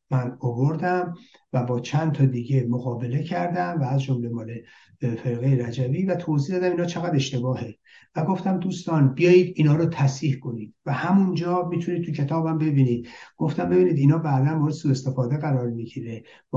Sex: male